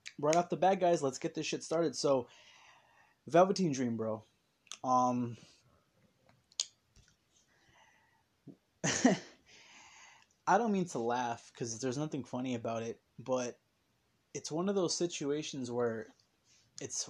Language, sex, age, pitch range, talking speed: English, male, 20-39, 120-150 Hz, 120 wpm